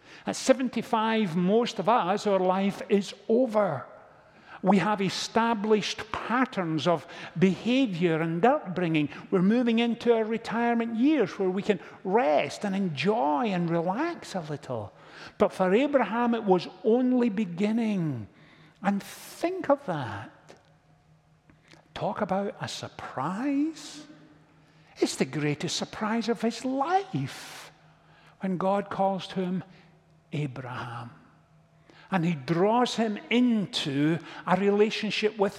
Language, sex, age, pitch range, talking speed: English, male, 50-69, 170-230 Hz, 115 wpm